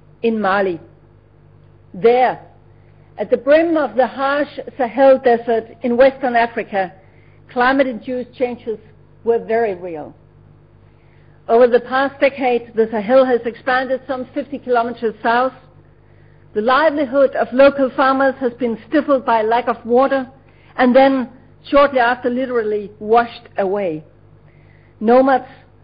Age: 50-69